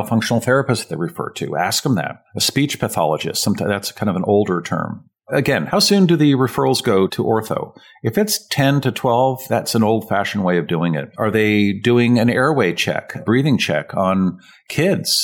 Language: English